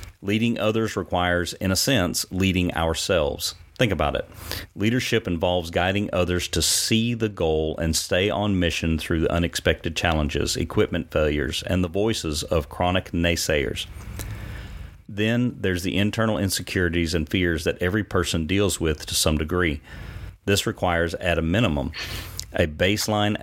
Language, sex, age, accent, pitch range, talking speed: English, male, 40-59, American, 80-100 Hz, 145 wpm